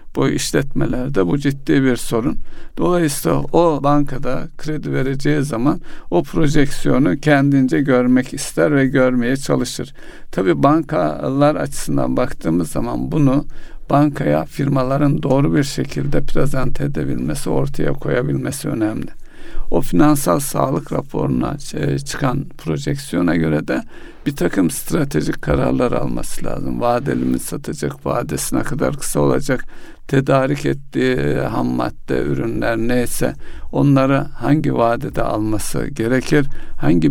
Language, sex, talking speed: Turkish, male, 110 wpm